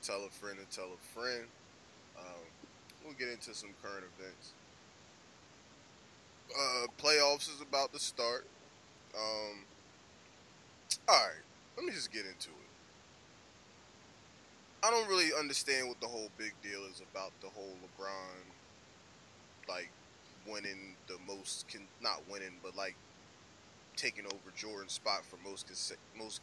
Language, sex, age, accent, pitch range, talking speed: English, male, 20-39, American, 100-130 Hz, 130 wpm